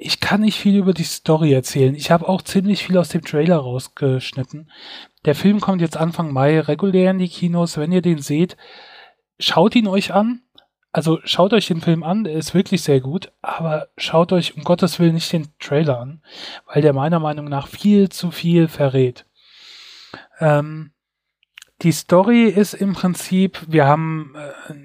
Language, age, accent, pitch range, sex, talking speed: German, 10-29, German, 145-185 Hz, male, 175 wpm